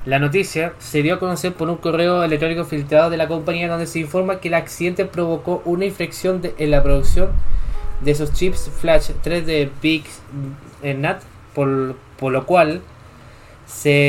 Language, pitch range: Spanish, 130-165 Hz